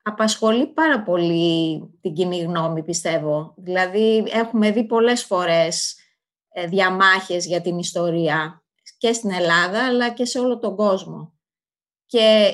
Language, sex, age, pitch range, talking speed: Greek, female, 20-39, 180-220 Hz, 125 wpm